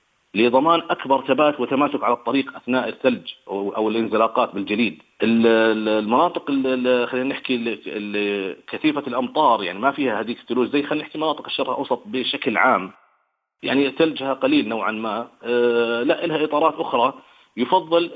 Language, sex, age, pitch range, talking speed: Arabic, male, 40-59, 110-140 Hz, 140 wpm